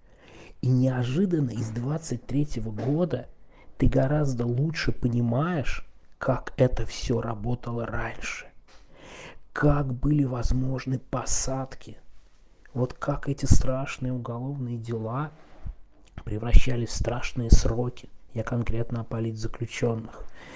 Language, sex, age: Russian, male, 20-39